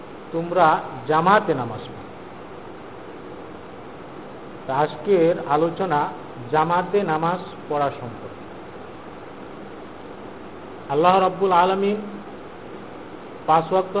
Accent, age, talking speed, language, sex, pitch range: native, 50-69, 55 wpm, Bengali, male, 160-195 Hz